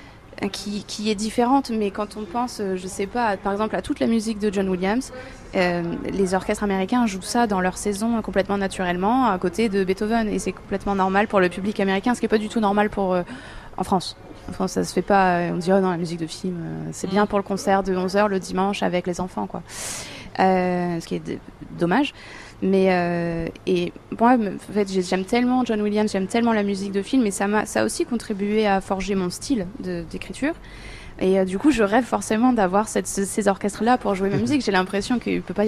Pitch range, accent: 185-225 Hz, French